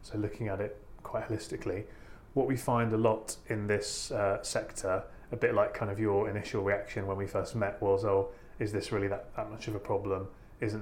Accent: British